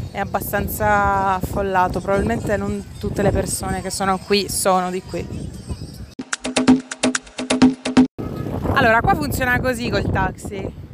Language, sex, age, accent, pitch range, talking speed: Italian, female, 30-49, native, 195-280 Hz, 110 wpm